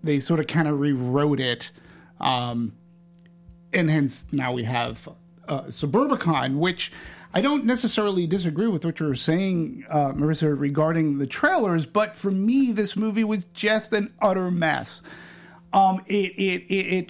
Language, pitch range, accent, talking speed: English, 165-205 Hz, American, 155 wpm